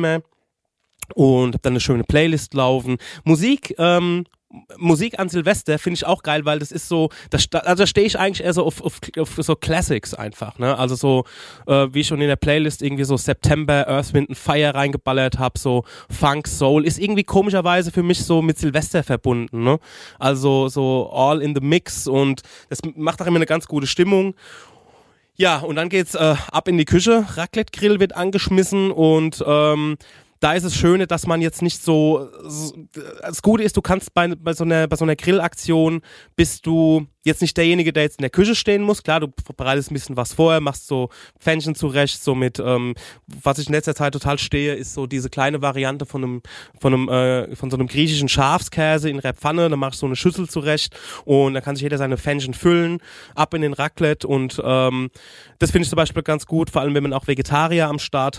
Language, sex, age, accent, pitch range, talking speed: German, male, 20-39, German, 135-170 Hz, 210 wpm